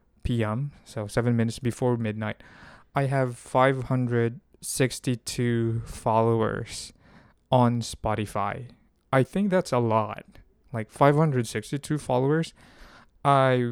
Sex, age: male, 20-39